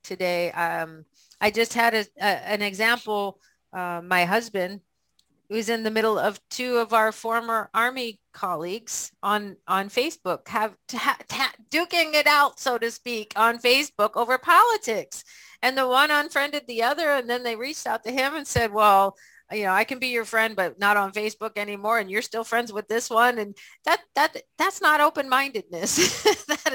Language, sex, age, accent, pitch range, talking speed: English, female, 40-59, American, 185-245 Hz, 180 wpm